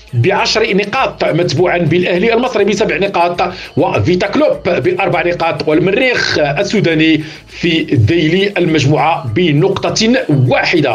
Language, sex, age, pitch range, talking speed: Arabic, male, 40-59, 155-190 Hz, 105 wpm